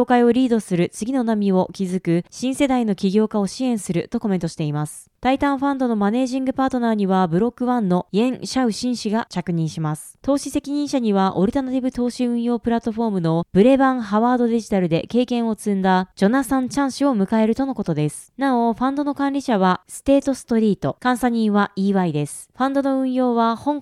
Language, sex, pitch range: Japanese, female, 195-260 Hz